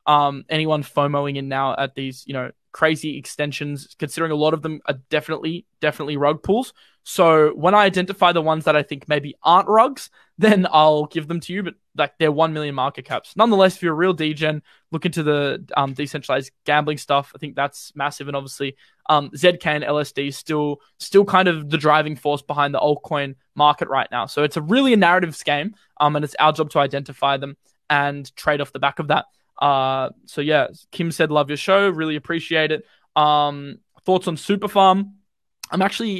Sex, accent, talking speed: male, Australian, 205 wpm